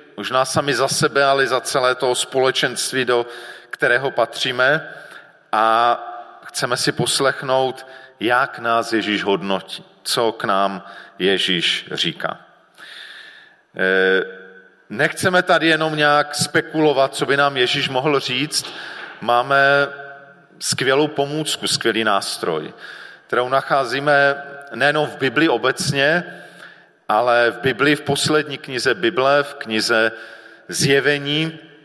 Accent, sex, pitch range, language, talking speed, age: native, male, 130-150 Hz, Czech, 105 wpm, 40-59